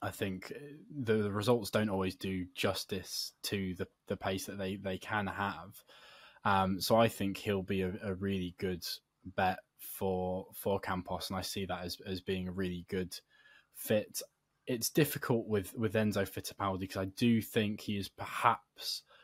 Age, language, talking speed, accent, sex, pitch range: 20-39, English, 175 wpm, British, male, 95-105 Hz